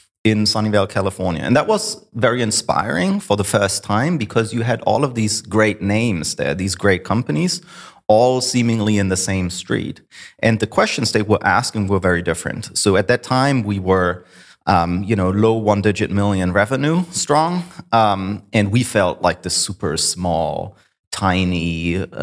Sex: male